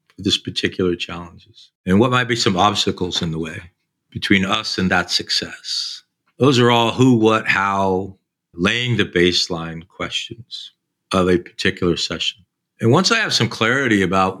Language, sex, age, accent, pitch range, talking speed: English, male, 50-69, American, 90-105 Hz, 160 wpm